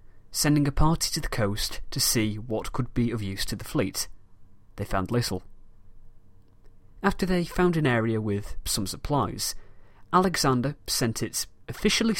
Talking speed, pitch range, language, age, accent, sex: 150 wpm, 100-135 Hz, English, 30-49, British, male